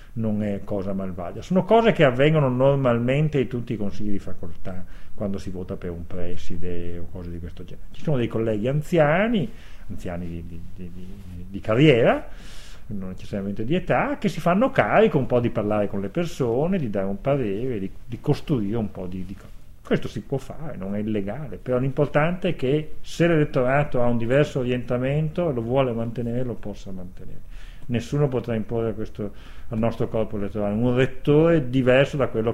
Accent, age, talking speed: native, 40-59, 180 wpm